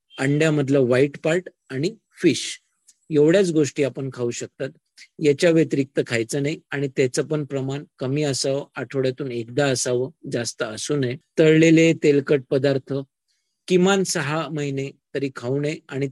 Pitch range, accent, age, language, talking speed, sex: 135-160 Hz, Indian, 50-69, English, 135 wpm, male